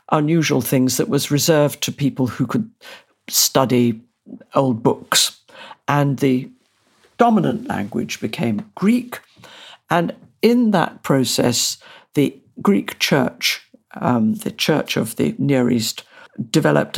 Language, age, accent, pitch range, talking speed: English, 60-79, British, 130-175 Hz, 115 wpm